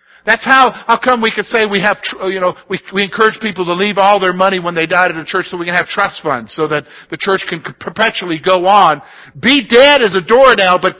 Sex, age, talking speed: male, 50-69, 255 wpm